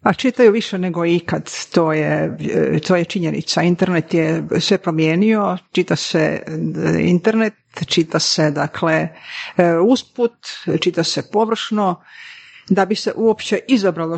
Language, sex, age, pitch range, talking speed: Croatian, female, 50-69, 170-210 Hz, 115 wpm